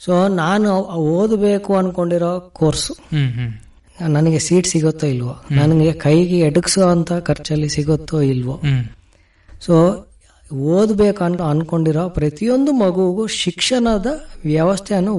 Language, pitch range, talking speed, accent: Kannada, 145-195 Hz, 90 wpm, native